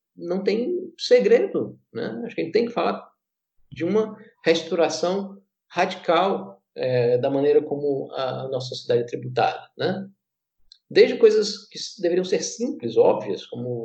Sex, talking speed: male, 135 wpm